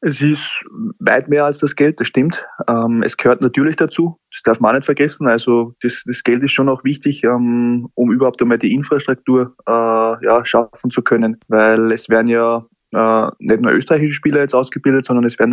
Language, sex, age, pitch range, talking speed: German, male, 20-39, 115-130 Hz, 205 wpm